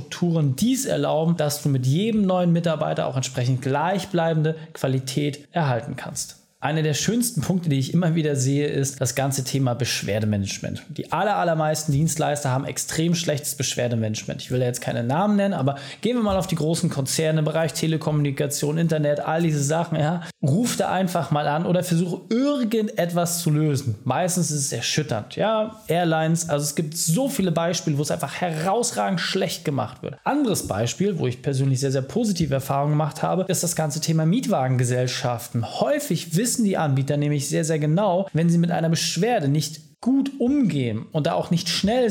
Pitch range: 145-185 Hz